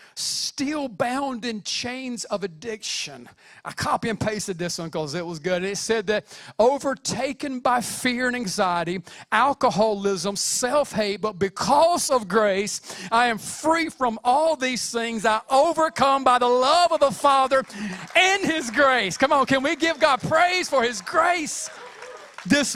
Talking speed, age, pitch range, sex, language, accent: 155 wpm, 40-59, 215-280 Hz, male, English, American